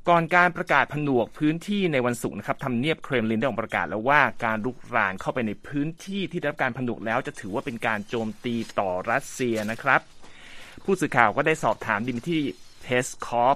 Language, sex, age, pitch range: Thai, male, 30-49, 115-155 Hz